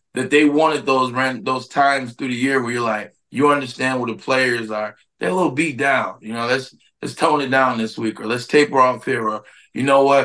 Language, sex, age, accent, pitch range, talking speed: English, male, 20-39, American, 120-145 Hz, 245 wpm